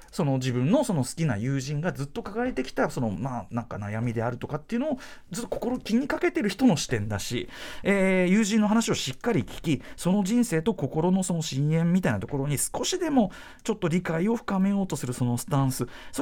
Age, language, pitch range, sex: 40-59, Japanese, 120-200 Hz, male